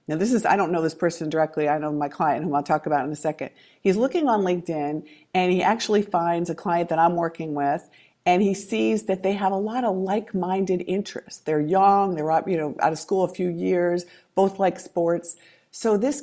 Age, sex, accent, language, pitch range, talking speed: 50-69, female, American, English, 170-210 Hz, 225 wpm